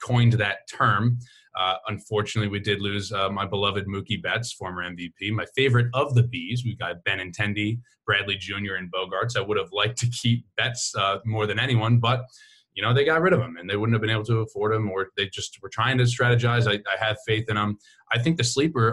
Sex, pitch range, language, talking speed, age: male, 105-125 Hz, English, 230 wpm, 20-39